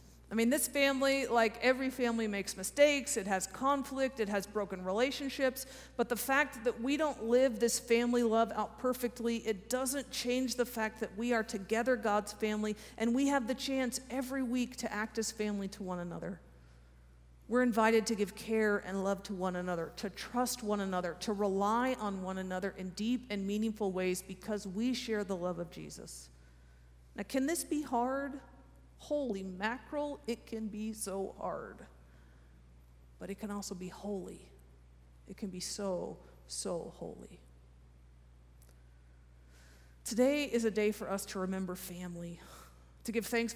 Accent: American